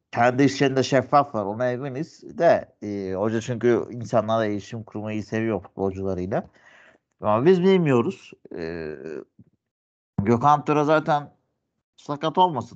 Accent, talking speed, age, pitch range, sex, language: native, 120 wpm, 60-79, 95-130 Hz, male, Turkish